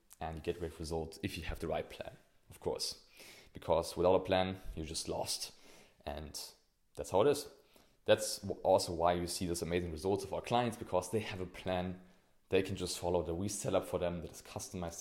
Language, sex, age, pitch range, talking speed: English, male, 20-39, 85-100 Hz, 210 wpm